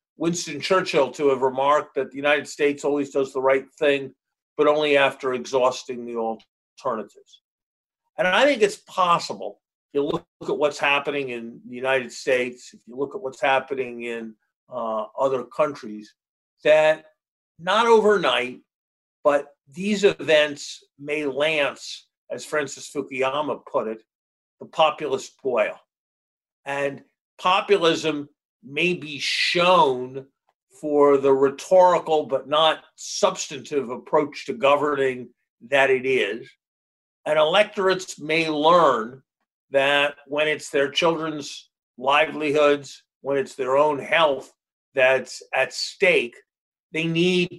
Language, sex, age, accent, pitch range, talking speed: English, male, 50-69, American, 135-160 Hz, 125 wpm